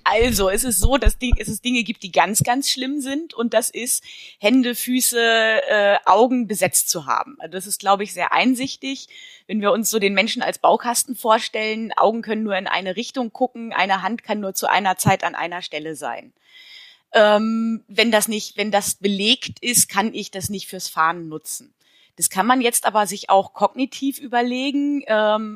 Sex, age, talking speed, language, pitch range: female, 20-39, 195 wpm, German, 190-240 Hz